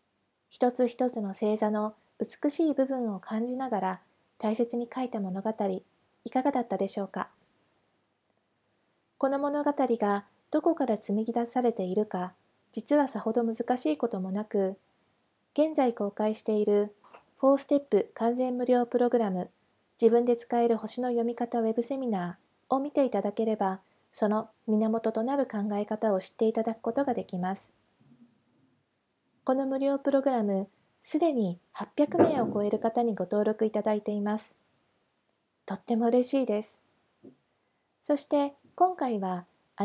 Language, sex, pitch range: Japanese, female, 210-255 Hz